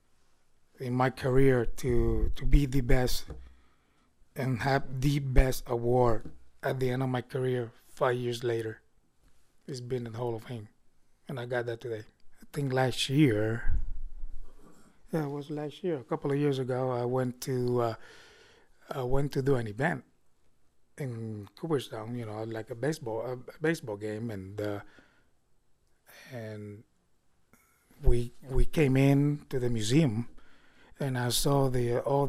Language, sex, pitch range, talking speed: English, male, 115-140 Hz, 155 wpm